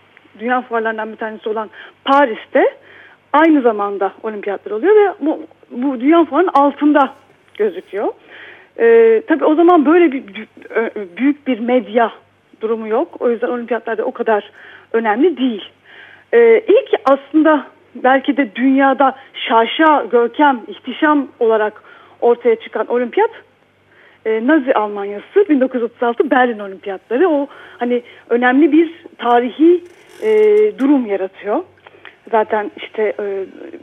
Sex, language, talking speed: female, Turkish, 115 wpm